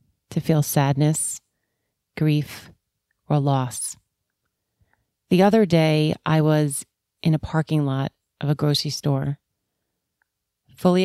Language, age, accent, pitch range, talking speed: English, 30-49, American, 130-165 Hz, 110 wpm